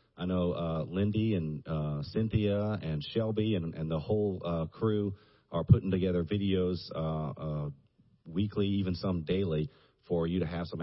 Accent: American